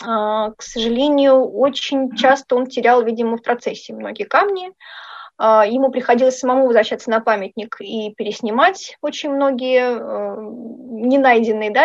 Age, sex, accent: 30-49, female, native